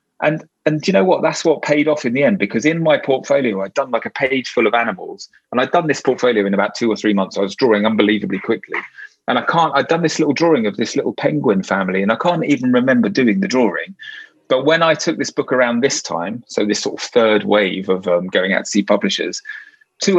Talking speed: 245 wpm